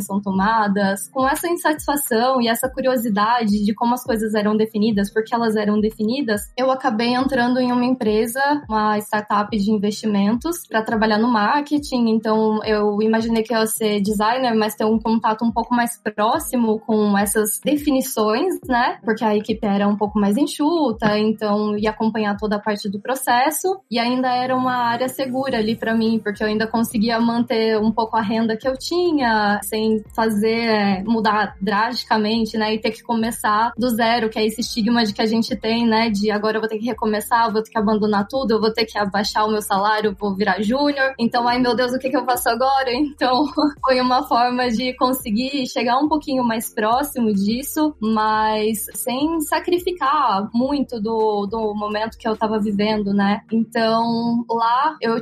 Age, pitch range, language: 10-29, 215-250 Hz, Portuguese